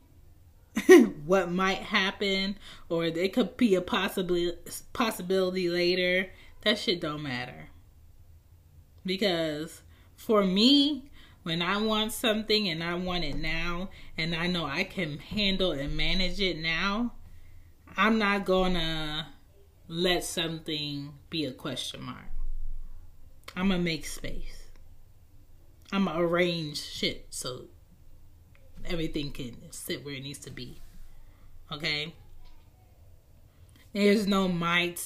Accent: American